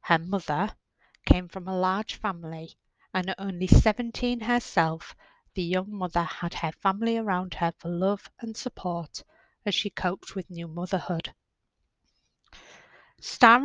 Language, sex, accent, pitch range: English, female, British, 175-215 Hz